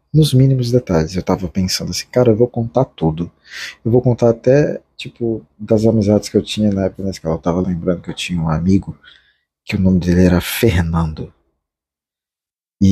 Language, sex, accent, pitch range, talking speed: Portuguese, male, Brazilian, 90-145 Hz, 185 wpm